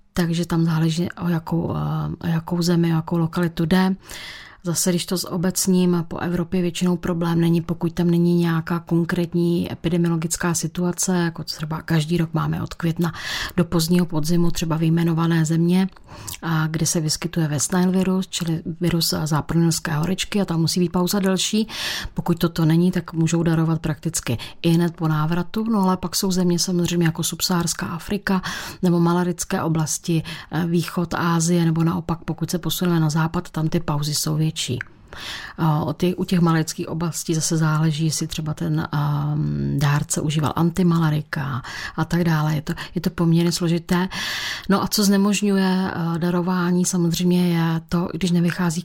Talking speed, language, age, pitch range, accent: 155 wpm, Czech, 30-49, 160-180 Hz, native